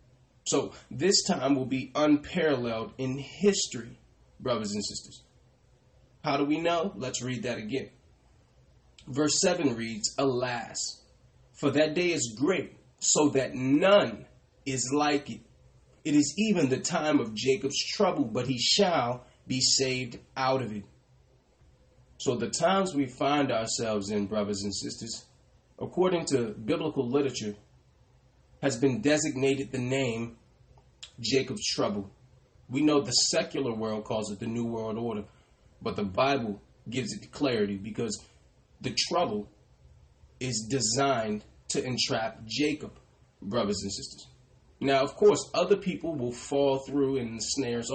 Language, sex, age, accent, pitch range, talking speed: English, male, 30-49, American, 115-145 Hz, 135 wpm